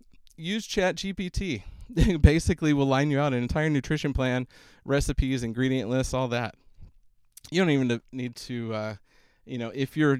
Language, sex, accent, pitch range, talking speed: English, male, American, 115-140 Hz, 160 wpm